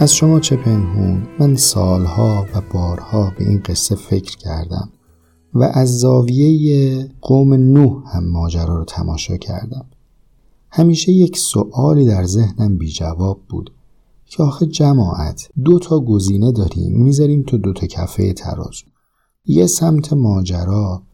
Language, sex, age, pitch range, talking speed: Persian, male, 50-69, 95-135 Hz, 130 wpm